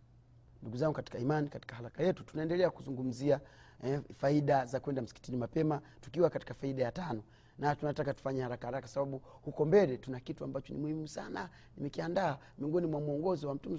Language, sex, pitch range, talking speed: Swahili, male, 130-165 Hz, 175 wpm